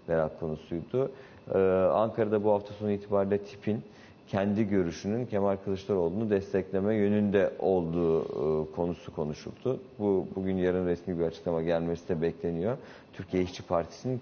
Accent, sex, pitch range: native, male, 85-105 Hz